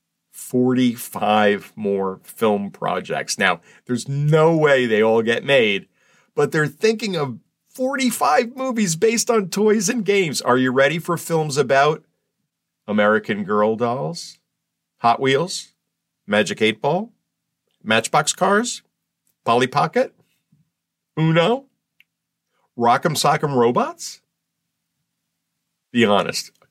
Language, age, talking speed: English, 50-69, 105 wpm